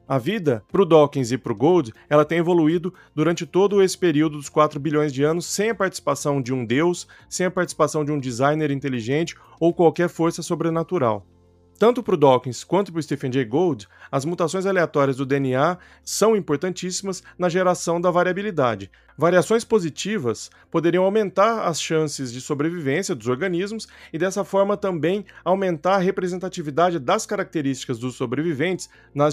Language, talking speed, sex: Portuguese, 165 wpm, male